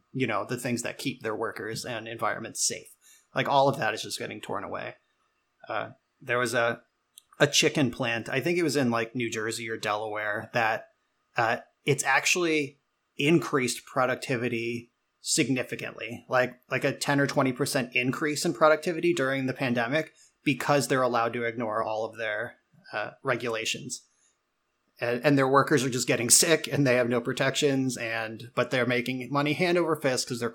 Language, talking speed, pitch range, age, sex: English, 175 wpm, 120-145 Hz, 30-49, male